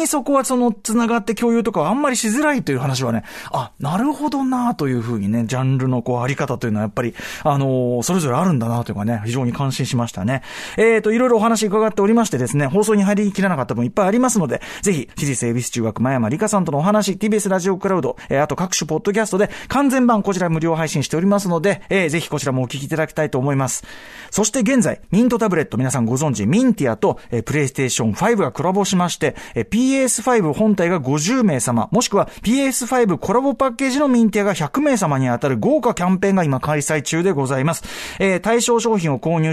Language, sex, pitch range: Japanese, male, 130-220 Hz